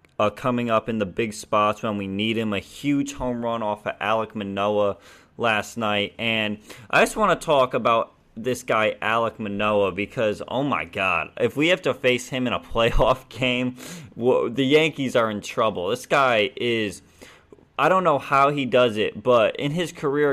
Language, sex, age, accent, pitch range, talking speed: English, male, 20-39, American, 105-140 Hz, 190 wpm